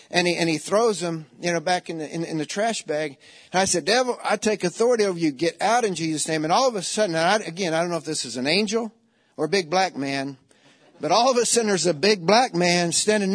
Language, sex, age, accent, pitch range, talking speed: English, male, 50-69, American, 165-215 Hz, 280 wpm